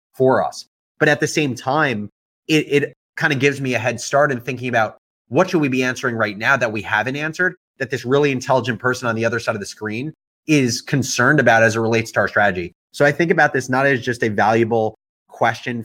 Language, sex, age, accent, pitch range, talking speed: English, male, 30-49, American, 115-140 Hz, 230 wpm